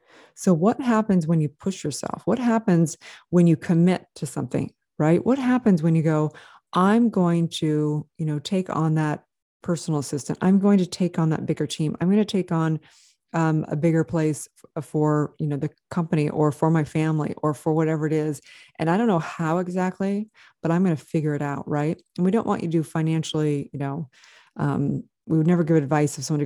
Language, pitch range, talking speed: English, 155-180 Hz, 215 wpm